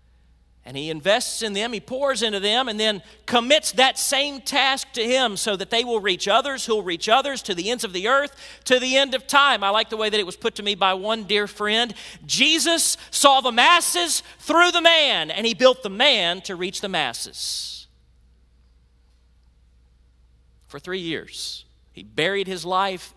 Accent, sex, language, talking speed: American, male, English, 195 wpm